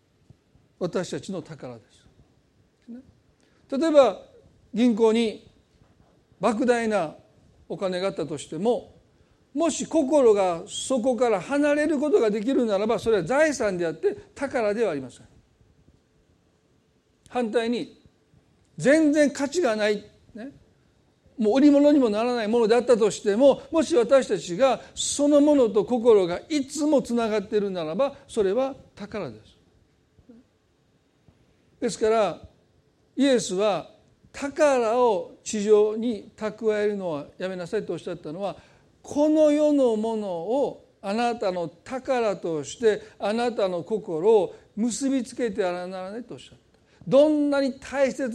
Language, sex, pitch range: Japanese, male, 195-275 Hz